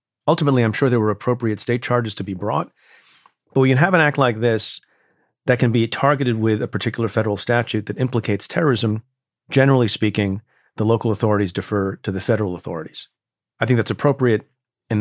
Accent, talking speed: American, 185 wpm